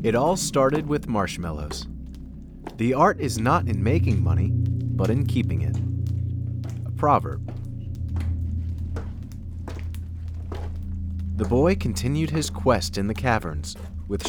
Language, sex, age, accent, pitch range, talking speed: English, male, 30-49, American, 80-120 Hz, 115 wpm